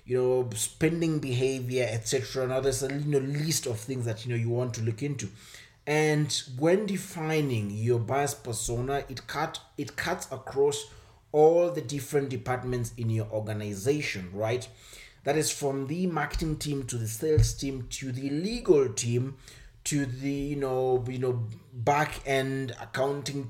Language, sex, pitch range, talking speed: English, male, 115-140 Hz, 160 wpm